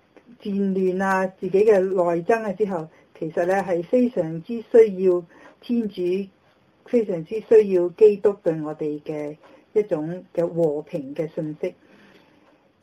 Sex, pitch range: female, 165-200 Hz